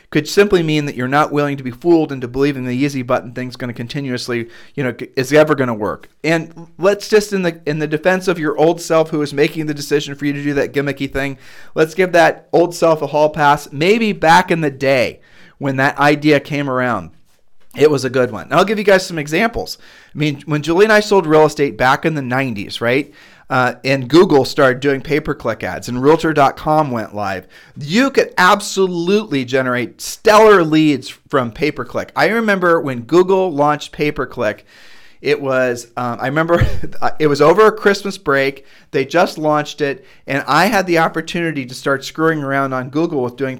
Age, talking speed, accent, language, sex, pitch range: 40-59, 200 wpm, American, English, male, 130-170 Hz